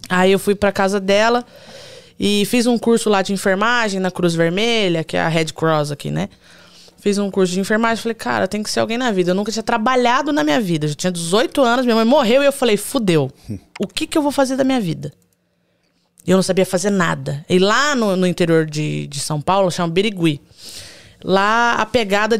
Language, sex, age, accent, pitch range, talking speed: Portuguese, female, 20-39, Brazilian, 180-245 Hz, 225 wpm